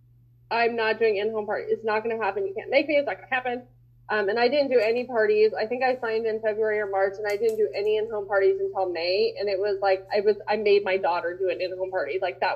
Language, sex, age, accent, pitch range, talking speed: English, female, 20-39, American, 190-230 Hz, 280 wpm